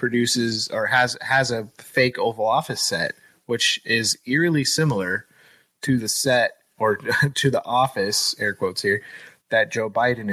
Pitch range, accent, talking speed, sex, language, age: 115-150 Hz, American, 150 wpm, male, English, 20-39